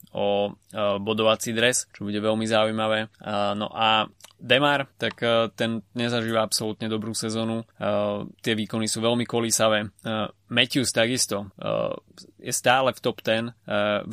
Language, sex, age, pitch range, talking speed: Slovak, male, 20-39, 100-110 Hz, 120 wpm